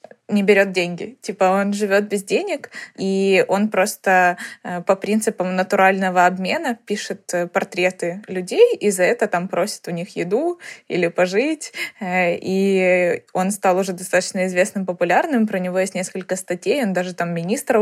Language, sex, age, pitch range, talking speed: Ukrainian, female, 20-39, 180-210 Hz, 150 wpm